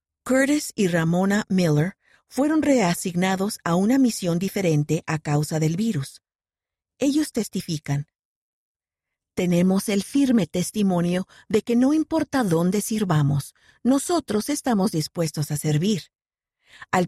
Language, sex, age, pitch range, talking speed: Spanish, female, 50-69, 165-230 Hz, 110 wpm